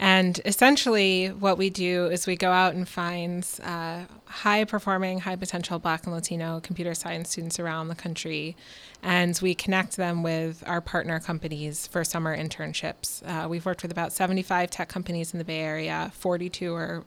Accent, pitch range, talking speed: American, 170-190 Hz, 170 wpm